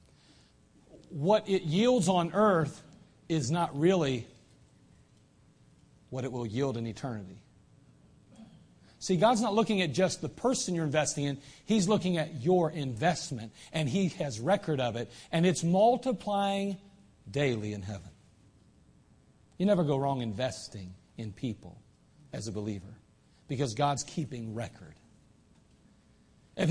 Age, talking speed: 40-59, 130 wpm